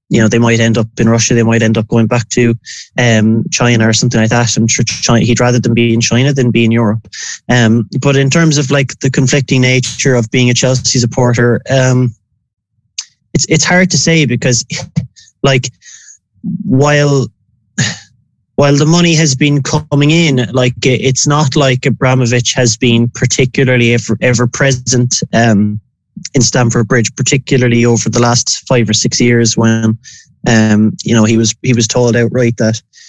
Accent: Irish